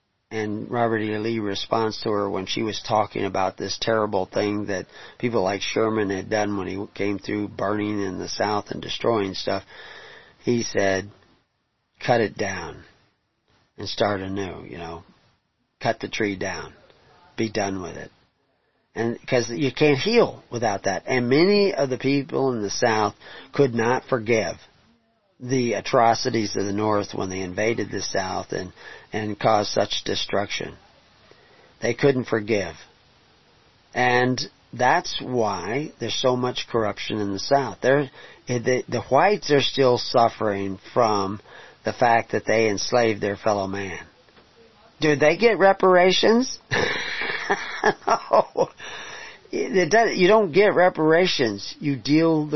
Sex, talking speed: male, 140 wpm